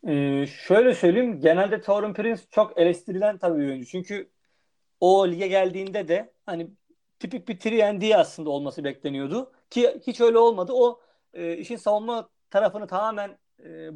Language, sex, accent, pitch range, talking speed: Turkish, male, native, 165-230 Hz, 140 wpm